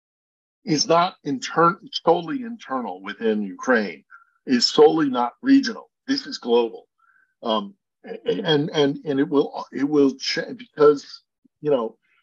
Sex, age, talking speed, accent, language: male, 50-69, 130 wpm, American, English